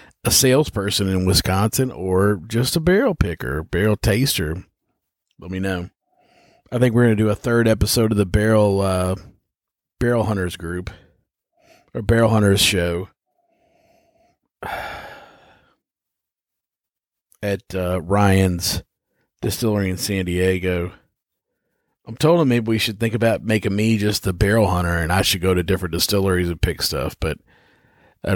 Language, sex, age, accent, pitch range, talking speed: English, male, 40-59, American, 95-125 Hz, 140 wpm